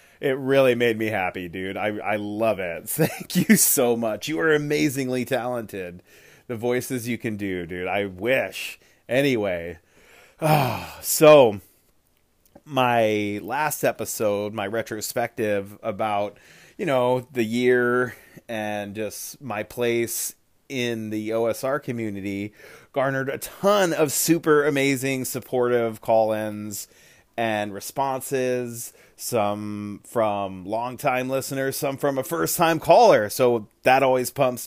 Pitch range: 110-140 Hz